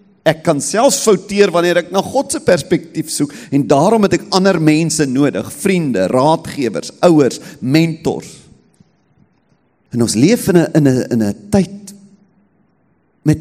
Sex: male